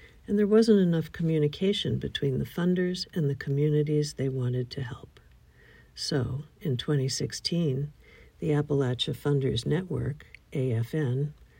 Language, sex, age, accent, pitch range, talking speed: English, female, 60-79, American, 135-180 Hz, 120 wpm